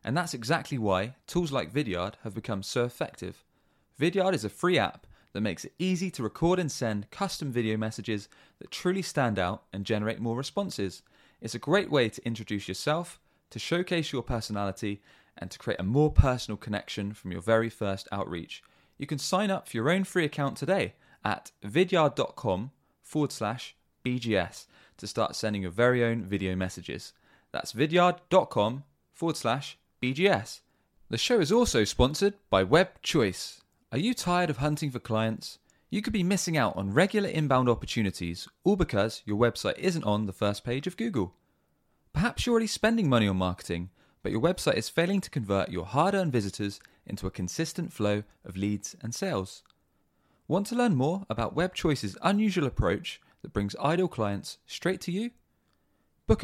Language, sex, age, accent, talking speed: English, male, 20-39, British, 175 wpm